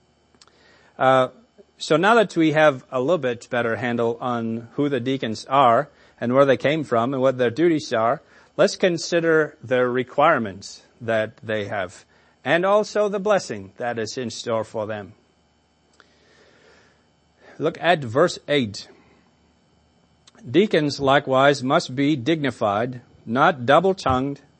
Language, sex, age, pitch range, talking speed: English, male, 40-59, 115-150 Hz, 130 wpm